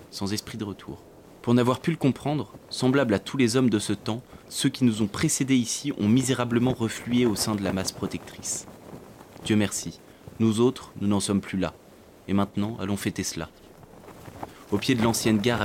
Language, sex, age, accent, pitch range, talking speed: French, male, 20-39, French, 95-110 Hz, 195 wpm